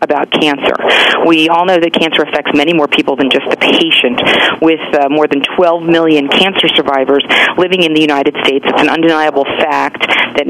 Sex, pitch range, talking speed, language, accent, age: female, 140-165 Hz, 190 wpm, English, American, 40-59